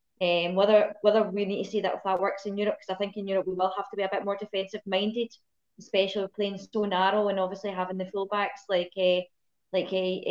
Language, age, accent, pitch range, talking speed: English, 20-39, British, 180-205 Hz, 245 wpm